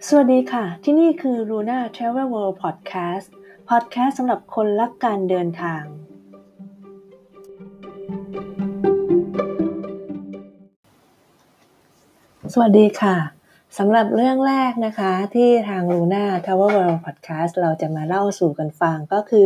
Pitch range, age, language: 170-215 Hz, 20-39, Thai